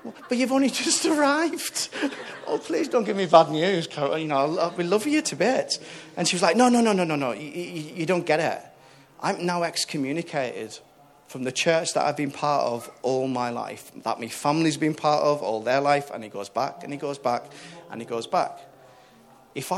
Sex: male